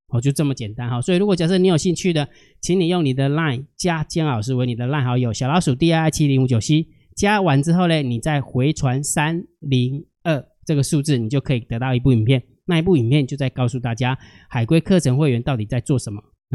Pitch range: 125-170 Hz